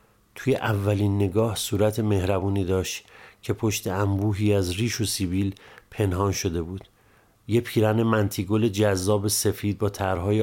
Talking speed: 130 wpm